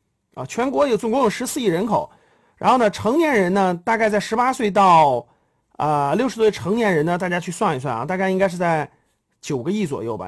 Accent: native